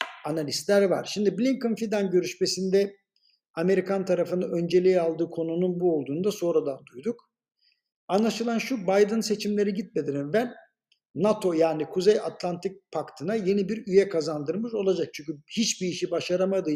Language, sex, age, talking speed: Turkish, male, 60-79, 135 wpm